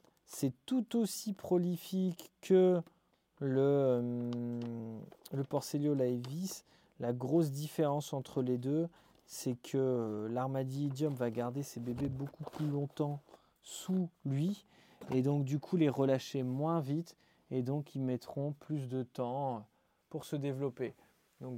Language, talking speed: French, 130 wpm